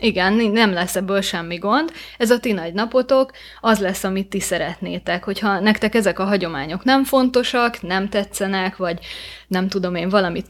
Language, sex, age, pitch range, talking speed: Hungarian, female, 20-39, 185-220 Hz, 170 wpm